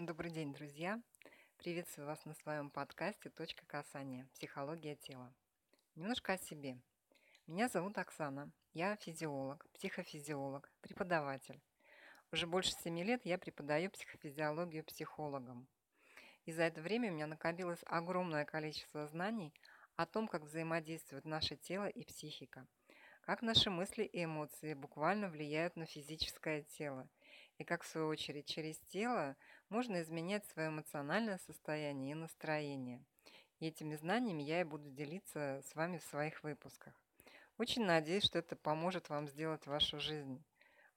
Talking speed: 135 wpm